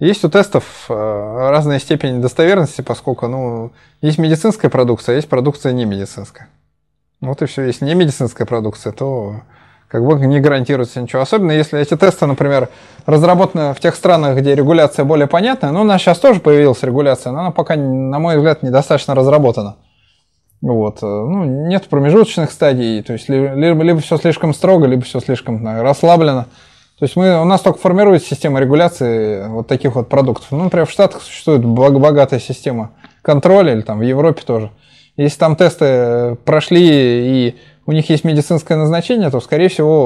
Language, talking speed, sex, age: Russian, 170 wpm, male, 20-39